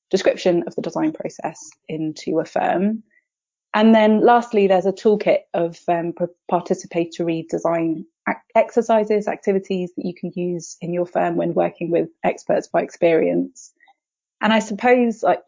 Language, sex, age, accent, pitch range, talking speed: English, female, 30-49, British, 170-215 Hz, 145 wpm